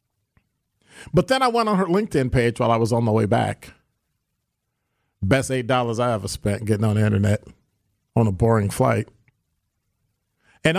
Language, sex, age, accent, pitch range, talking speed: English, male, 50-69, American, 110-145 Hz, 160 wpm